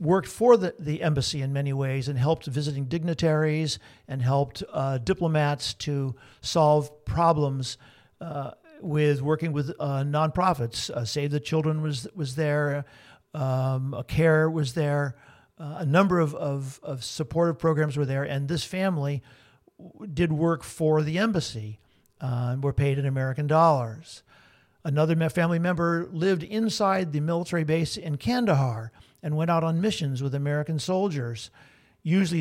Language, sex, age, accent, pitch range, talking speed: English, male, 50-69, American, 135-165 Hz, 155 wpm